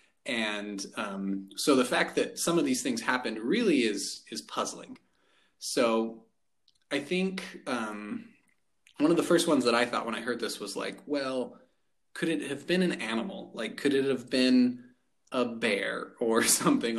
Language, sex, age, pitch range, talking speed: English, male, 30-49, 110-170 Hz, 175 wpm